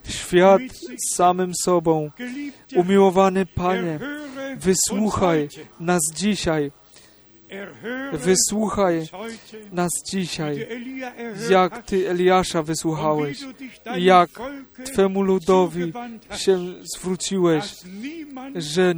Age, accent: 40-59, native